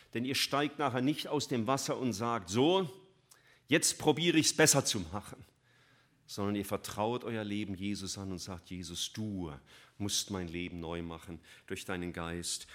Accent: German